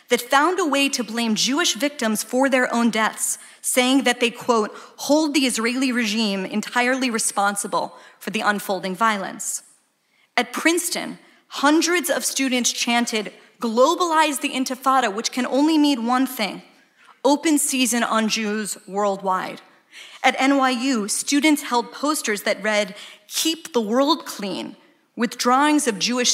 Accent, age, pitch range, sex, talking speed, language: American, 30-49, 225-285 Hz, female, 140 wpm, English